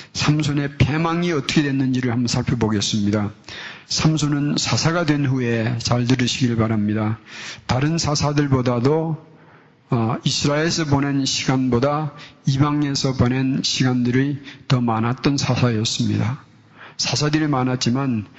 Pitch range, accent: 125-145 Hz, native